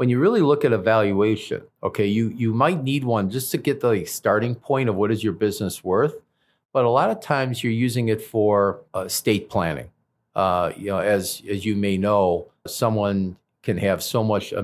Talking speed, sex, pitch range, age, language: 210 wpm, male, 100-120 Hz, 50-69, English